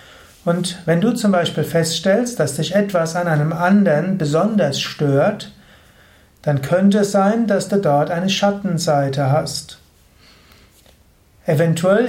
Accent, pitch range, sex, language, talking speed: German, 150-190 Hz, male, German, 125 wpm